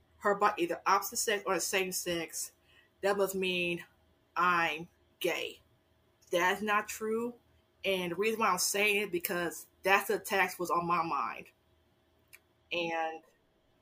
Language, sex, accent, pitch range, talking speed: English, female, American, 180-230 Hz, 145 wpm